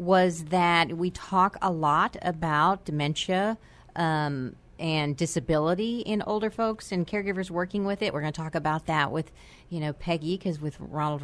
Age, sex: 50-69, female